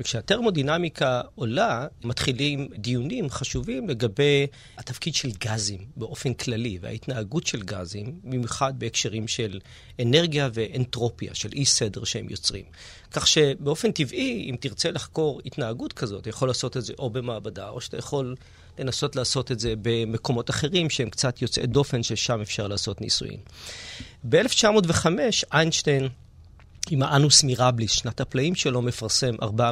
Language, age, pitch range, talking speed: Hebrew, 40-59, 110-135 Hz, 135 wpm